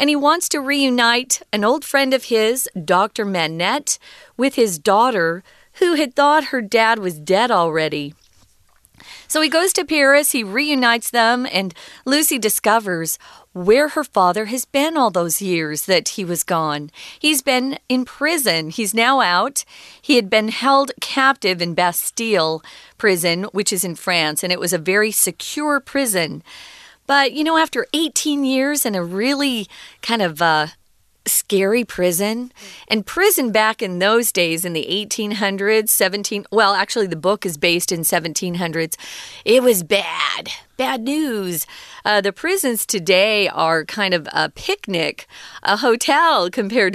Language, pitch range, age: Chinese, 180-270 Hz, 40-59